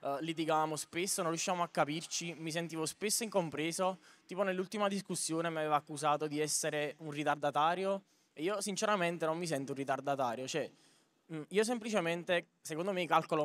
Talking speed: 160 wpm